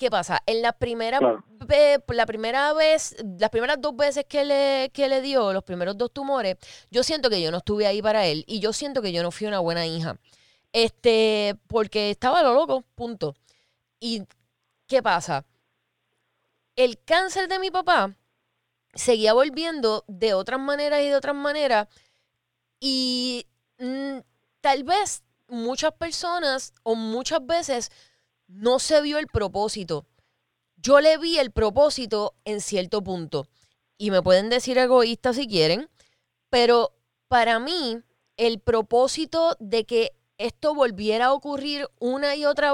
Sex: female